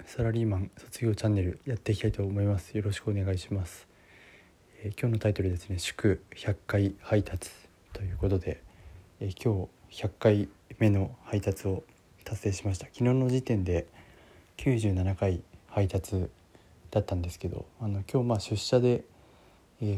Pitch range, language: 95-115 Hz, Japanese